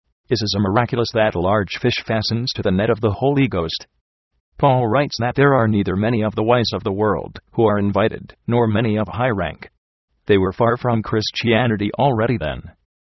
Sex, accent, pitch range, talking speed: male, American, 100-120 Hz, 200 wpm